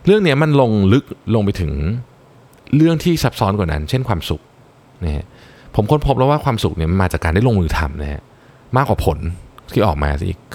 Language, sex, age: Thai, male, 20-39